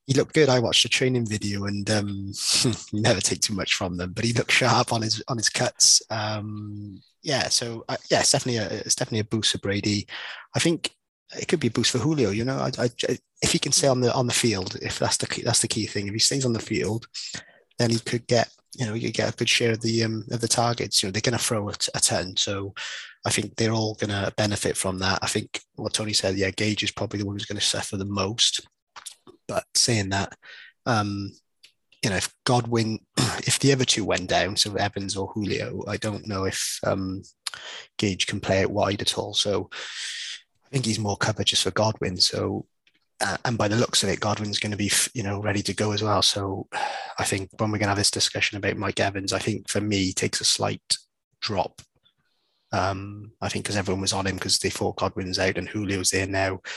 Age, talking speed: 20-39, 240 wpm